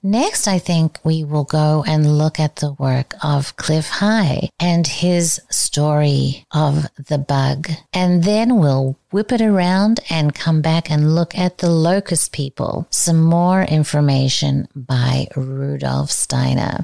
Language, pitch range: English, 140-185 Hz